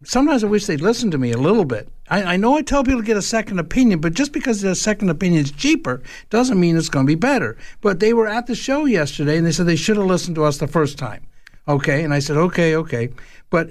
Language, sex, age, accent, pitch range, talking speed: English, male, 60-79, American, 150-205 Hz, 265 wpm